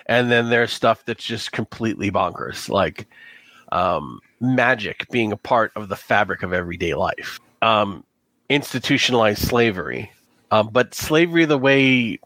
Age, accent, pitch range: 40-59, American, 110-130 Hz